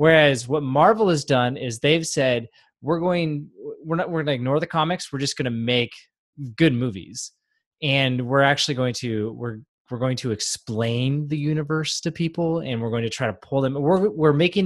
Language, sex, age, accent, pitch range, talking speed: English, male, 20-39, American, 125-170 Hz, 205 wpm